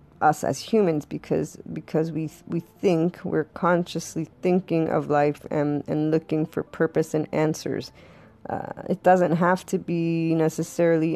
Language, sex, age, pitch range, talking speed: English, female, 20-39, 145-165 Hz, 150 wpm